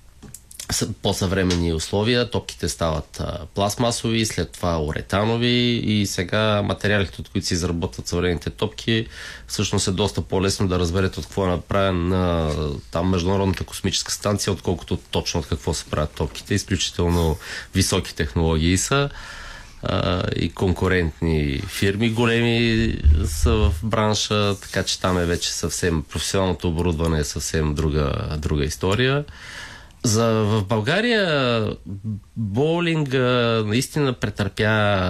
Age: 30-49